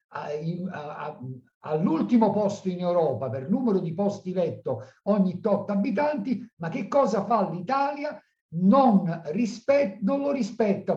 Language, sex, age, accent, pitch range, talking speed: Italian, male, 60-79, native, 150-210 Hz, 110 wpm